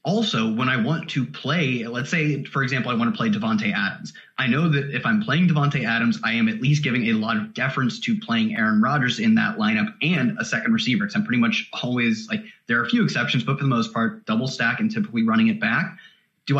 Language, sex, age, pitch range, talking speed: English, male, 30-49, 130-220 Hz, 250 wpm